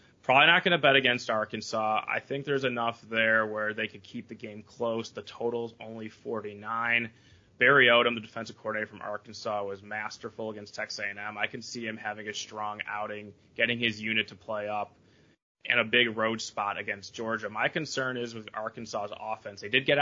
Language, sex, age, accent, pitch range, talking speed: English, male, 20-39, American, 105-115 Hz, 195 wpm